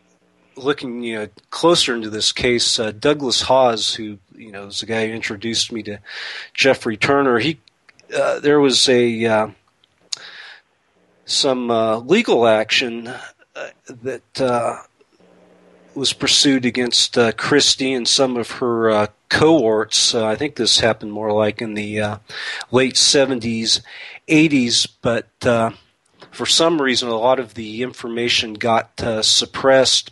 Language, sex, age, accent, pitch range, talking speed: English, male, 40-59, American, 110-130 Hz, 145 wpm